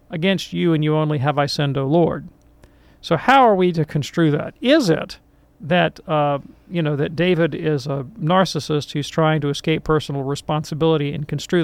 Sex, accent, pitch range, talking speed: male, American, 145-170 Hz, 185 wpm